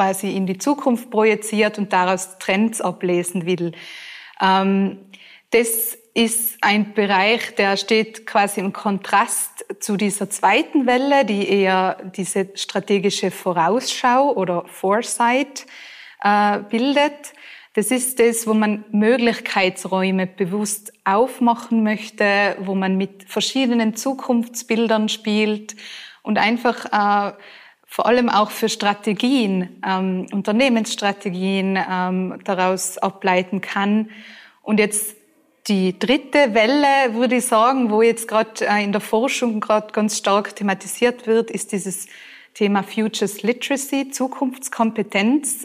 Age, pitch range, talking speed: 20-39, 195-240 Hz, 110 wpm